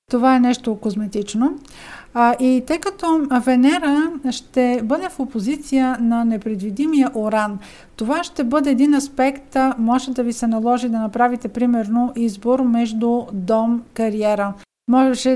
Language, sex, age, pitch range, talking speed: Bulgarian, female, 50-69, 225-260 Hz, 130 wpm